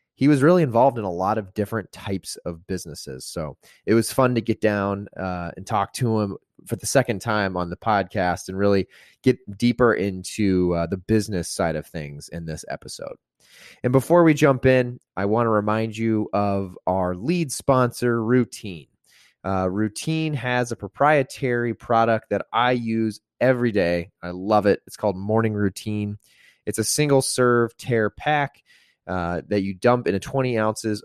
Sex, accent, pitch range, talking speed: male, American, 95-130 Hz, 175 wpm